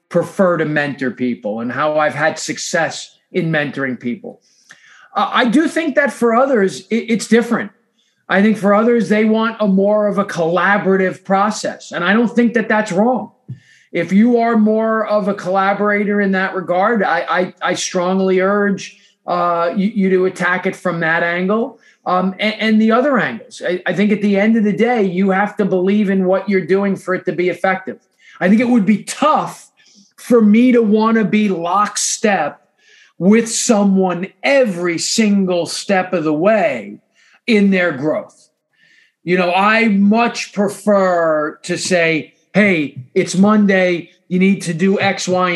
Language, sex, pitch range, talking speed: English, male, 175-215 Hz, 170 wpm